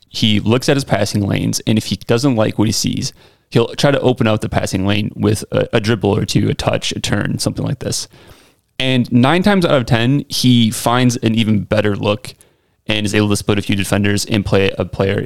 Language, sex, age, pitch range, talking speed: English, male, 30-49, 100-125 Hz, 230 wpm